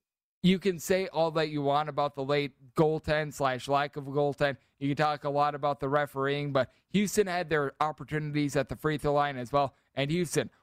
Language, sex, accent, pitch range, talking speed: English, male, American, 135-155 Hz, 215 wpm